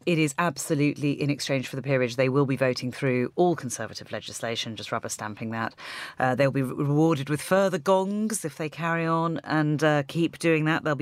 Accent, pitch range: British, 125-165 Hz